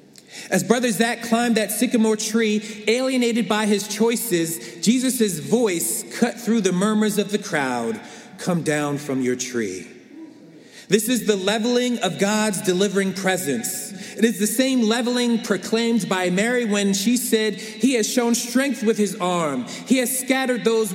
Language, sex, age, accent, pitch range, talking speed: English, male, 40-59, American, 180-230 Hz, 160 wpm